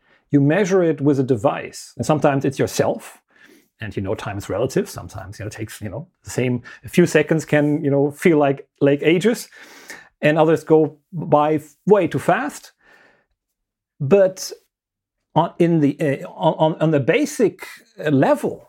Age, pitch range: 40-59, 135-170 Hz